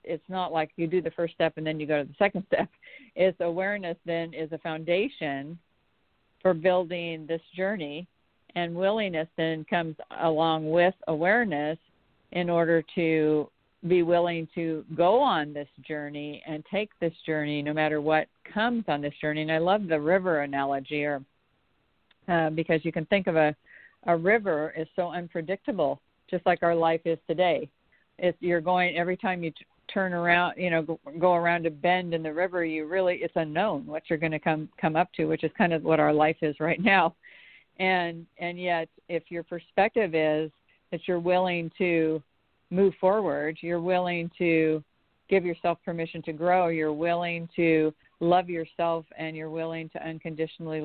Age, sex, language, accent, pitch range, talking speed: 50-69, female, English, American, 160-180 Hz, 180 wpm